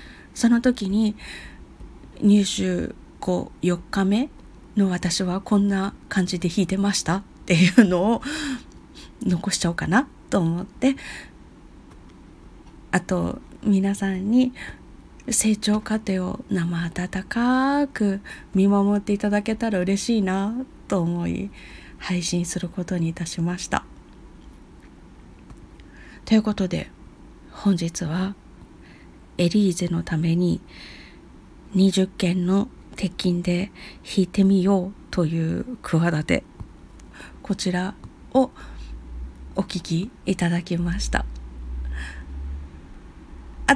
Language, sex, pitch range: Japanese, female, 175-225 Hz